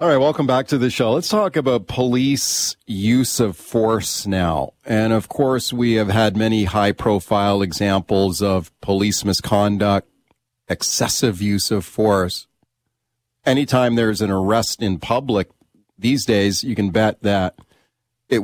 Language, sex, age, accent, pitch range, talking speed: English, male, 40-59, American, 100-120 Hz, 145 wpm